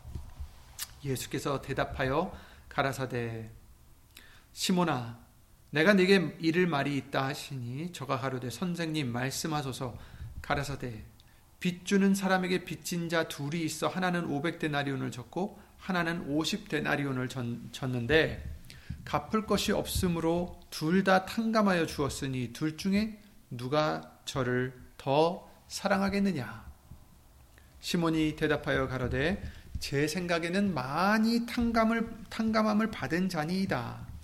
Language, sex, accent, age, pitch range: Korean, male, native, 40-59, 125-175 Hz